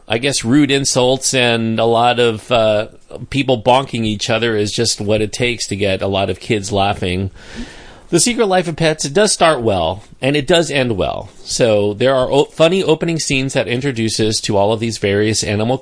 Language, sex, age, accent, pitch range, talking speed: English, male, 40-59, American, 105-140 Hz, 200 wpm